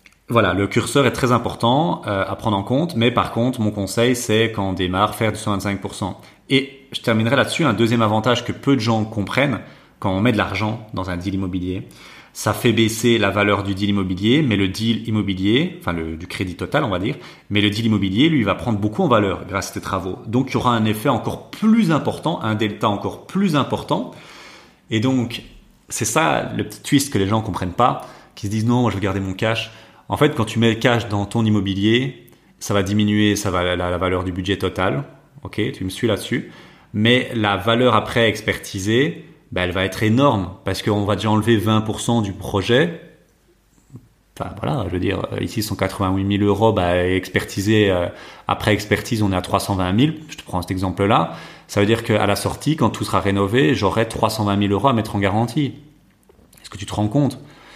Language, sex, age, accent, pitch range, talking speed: French, male, 30-49, French, 100-120 Hz, 210 wpm